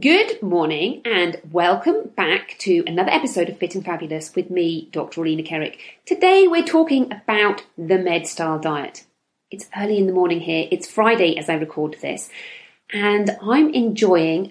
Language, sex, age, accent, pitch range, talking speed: English, female, 40-59, British, 165-240 Hz, 165 wpm